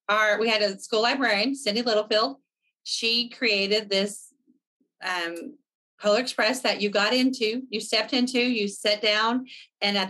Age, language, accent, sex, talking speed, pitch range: 30-49, English, American, female, 155 wpm, 195-225 Hz